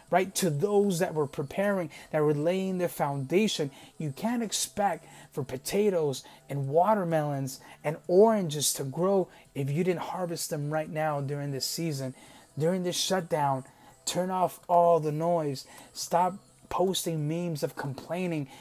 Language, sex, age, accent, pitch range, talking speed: English, male, 30-49, American, 145-190 Hz, 145 wpm